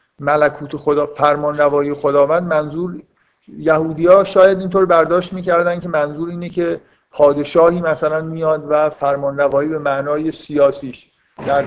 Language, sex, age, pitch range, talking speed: Persian, male, 50-69, 140-165 Hz, 120 wpm